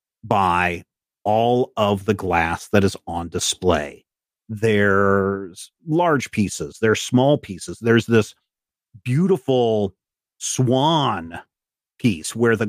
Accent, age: American, 40-59